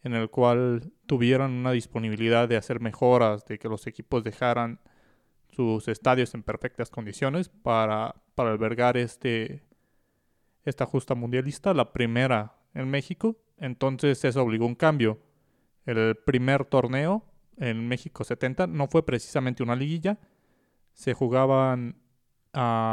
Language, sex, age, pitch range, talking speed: Spanish, male, 30-49, 120-150 Hz, 130 wpm